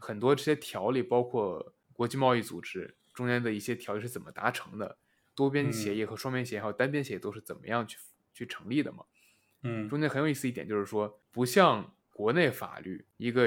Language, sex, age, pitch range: Chinese, male, 20-39, 110-155 Hz